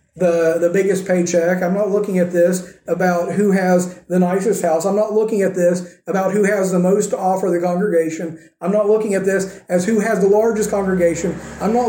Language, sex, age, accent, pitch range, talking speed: English, male, 40-59, American, 175-210 Hz, 210 wpm